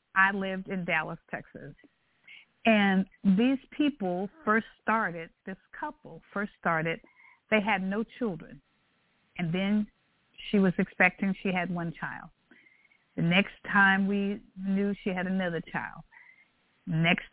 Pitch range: 180-225 Hz